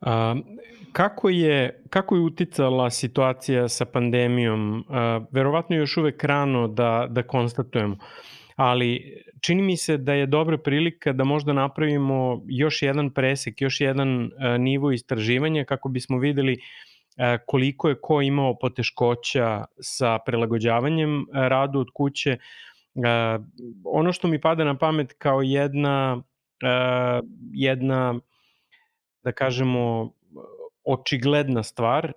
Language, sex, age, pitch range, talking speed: English, male, 30-49, 125-145 Hz, 110 wpm